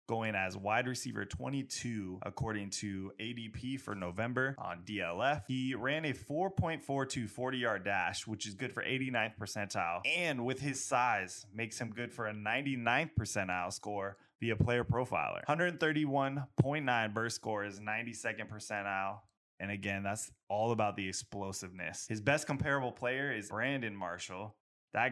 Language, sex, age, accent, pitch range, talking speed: English, male, 20-39, American, 100-130 Hz, 145 wpm